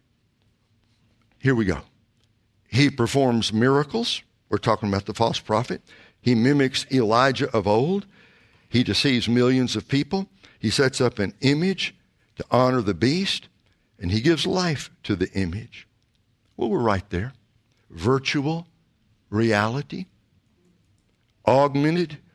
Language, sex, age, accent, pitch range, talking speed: English, male, 60-79, American, 105-140 Hz, 120 wpm